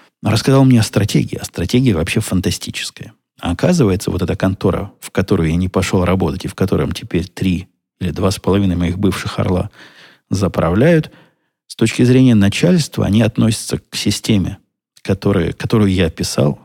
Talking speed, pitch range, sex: 165 wpm, 95-115 Hz, male